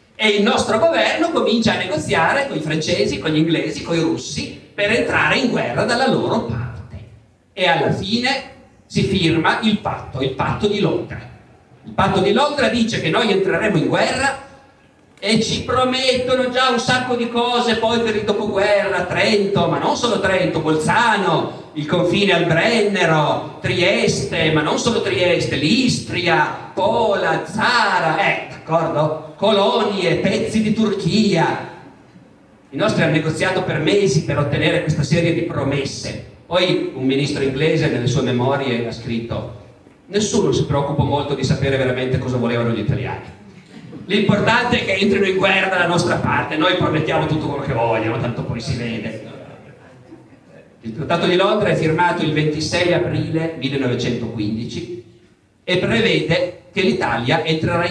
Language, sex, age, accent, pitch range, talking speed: Italian, male, 50-69, native, 135-205 Hz, 150 wpm